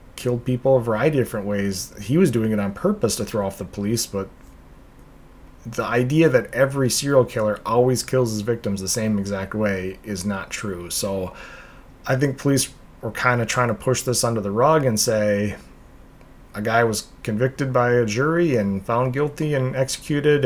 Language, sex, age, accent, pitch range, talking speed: English, male, 30-49, American, 100-125 Hz, 190 wpm